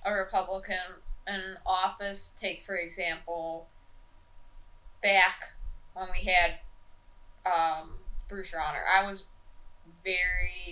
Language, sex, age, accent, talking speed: English, female, 20-39, American, 95 wpm